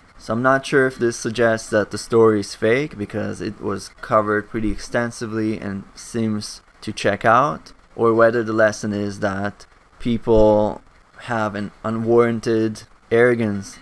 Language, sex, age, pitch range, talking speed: English, male, 20-39, 100-115 Hz, 150 wpm